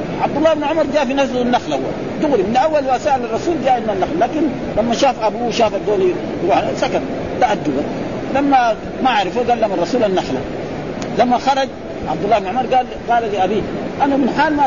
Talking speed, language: 185 wpm, Arabic